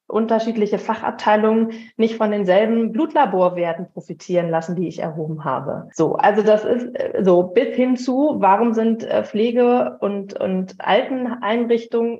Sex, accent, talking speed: female, German, 125 wpm